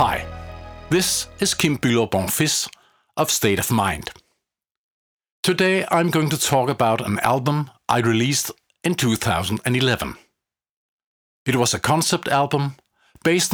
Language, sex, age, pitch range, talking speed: English, male, 50-69, 115-155 Hz, 120 wpm